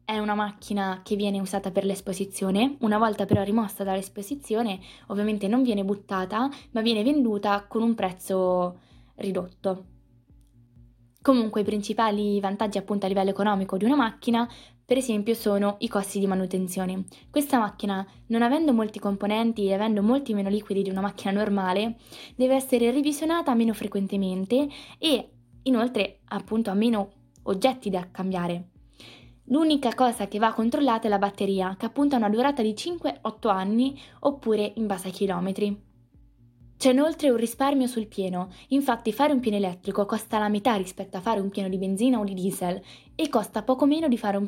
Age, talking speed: 20-39, 165 wpm